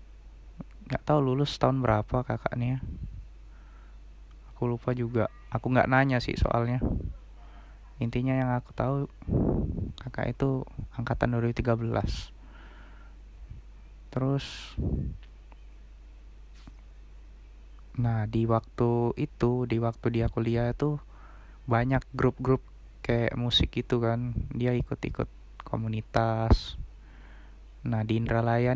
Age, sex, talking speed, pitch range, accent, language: 20-39, male, 90 wpm, 110-125 Hz, native, Indonesian